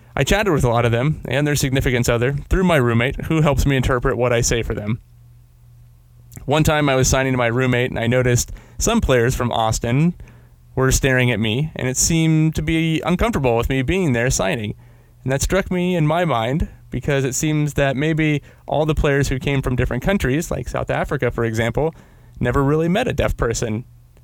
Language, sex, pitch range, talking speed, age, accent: English, male, 115-135 Hz, 210 wpm, 30-49, American